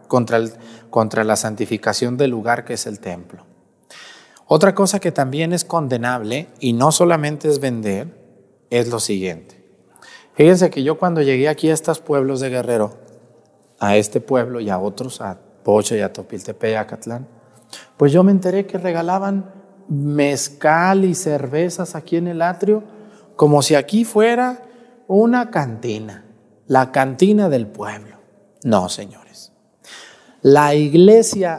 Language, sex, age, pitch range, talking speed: Spanish, male, 40-59, 115-170 Hz, 145 wpm